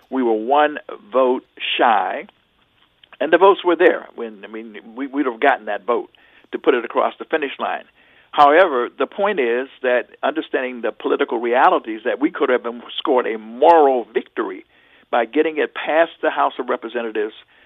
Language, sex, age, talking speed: English, male, 60-79, 175 wpm